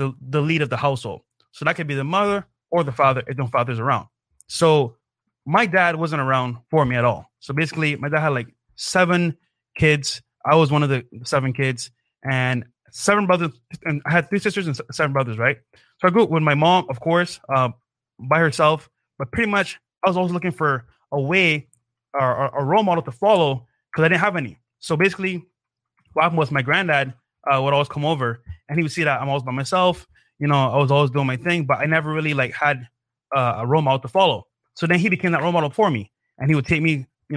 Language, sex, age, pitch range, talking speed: English, male, 20-39, 130-170 Hz, 235 wpm